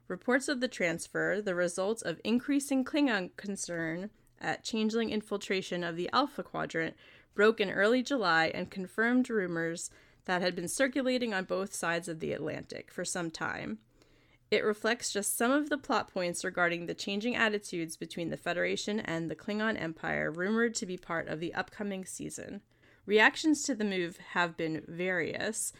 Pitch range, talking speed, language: 175-230 Hz, 165 wpm, English